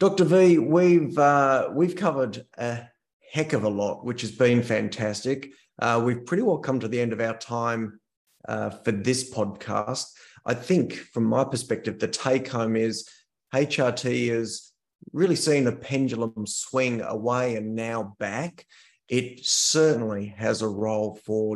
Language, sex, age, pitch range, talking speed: English, male, 30-49, 110-130 Hz, 155 wpm